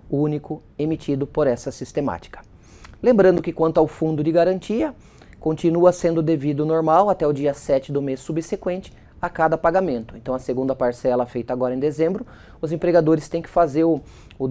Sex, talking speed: male, 170 wpm